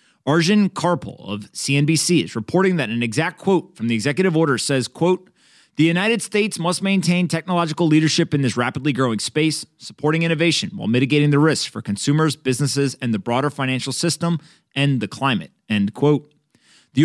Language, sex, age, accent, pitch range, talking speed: English, male, 30-49, American, 130-170 Hz, 170 wpm